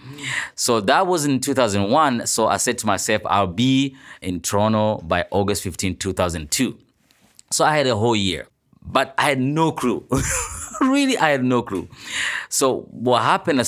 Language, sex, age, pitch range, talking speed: English, male, 30-49, 95-125 Hz, 165 wpm